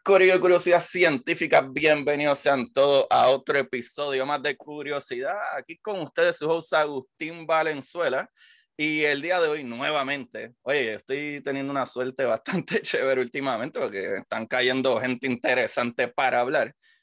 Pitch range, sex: 120-155 Hz, male